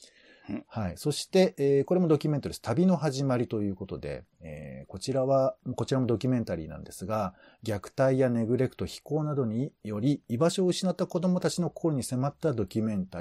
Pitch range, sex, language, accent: 95-150 Hz, male, Japanese, native